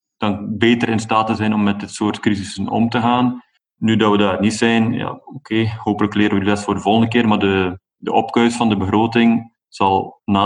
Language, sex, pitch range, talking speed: Dutch, male, 100-115 Hz, 230 wpm